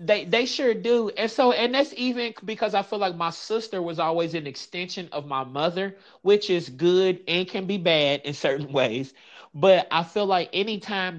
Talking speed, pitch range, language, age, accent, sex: 200 wpm, 155-205 Hz, English, 30-49, American, male